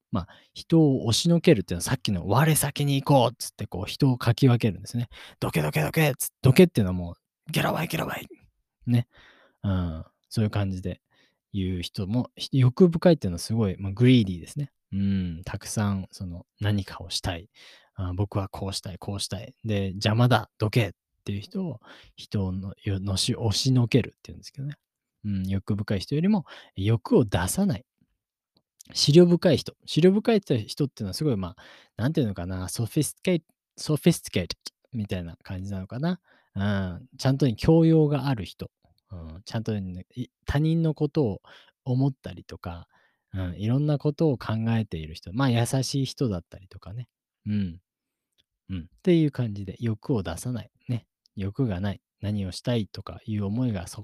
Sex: male